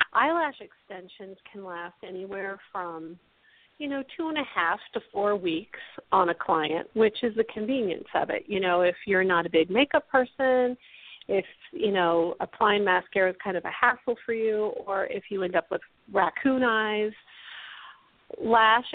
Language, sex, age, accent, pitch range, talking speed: English, female, 40-59, American, 185-250 Hz, 170 wpm